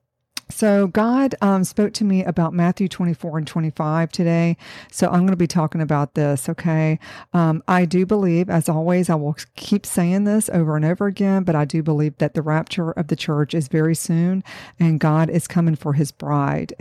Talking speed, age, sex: 200 wpm, 50-69, female